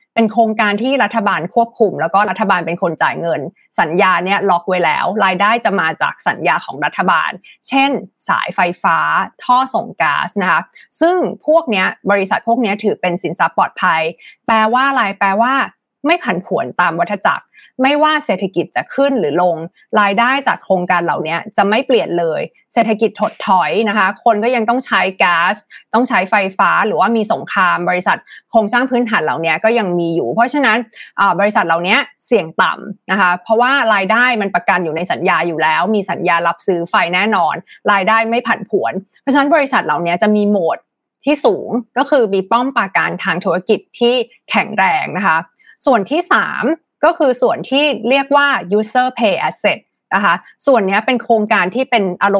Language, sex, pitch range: Thai, female, 195-255 Hz